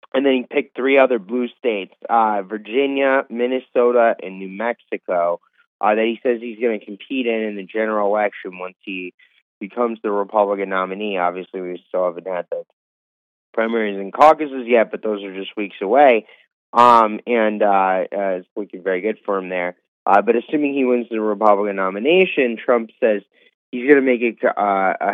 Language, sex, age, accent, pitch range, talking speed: English, male, 30-49, American, 100-120 Hz, 185 wpm